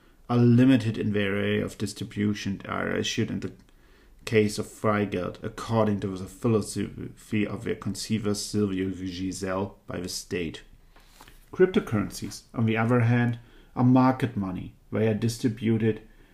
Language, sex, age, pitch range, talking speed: English, male, 40-59, 105-130 Hz, 135 wpm